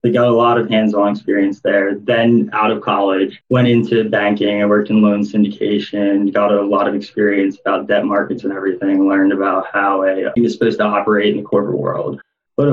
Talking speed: 205 wpm